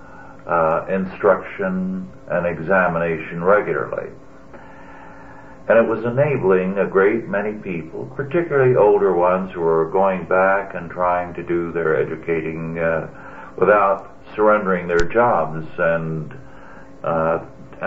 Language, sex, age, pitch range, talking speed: English, male, 60-79, 90-135 Hz, 110 wpm